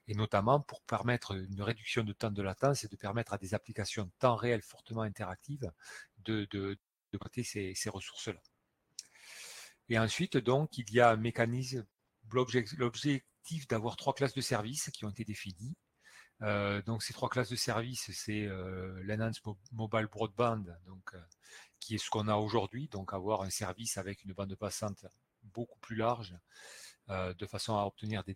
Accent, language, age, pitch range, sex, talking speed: French, French, 40-59, 100-120 Hz, male, 180 wpm